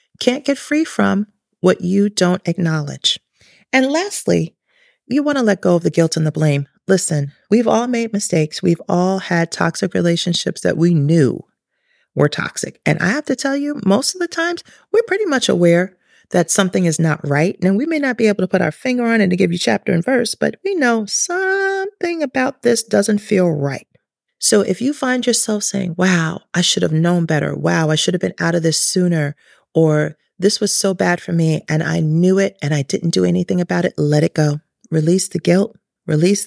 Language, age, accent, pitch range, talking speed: English, 40-59, American, 170-230 Hz, 210 wpm